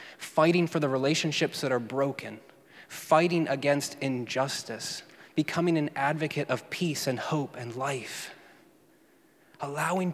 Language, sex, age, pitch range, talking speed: English, male, 20-39, 135-165 Hz, 120 wpm